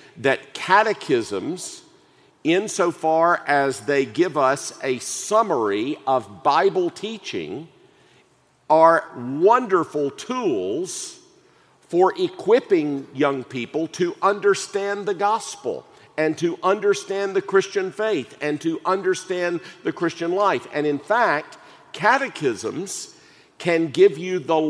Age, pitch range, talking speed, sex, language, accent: 50-69, 165-265 Hz, 105 wpm, male, English, American